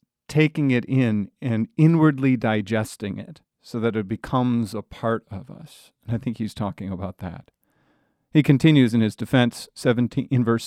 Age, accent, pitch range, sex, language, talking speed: 40-59, American, 115-150 Hz, male, English, 165 wpm